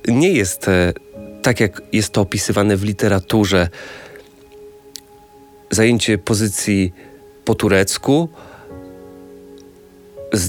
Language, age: Polish, 40-59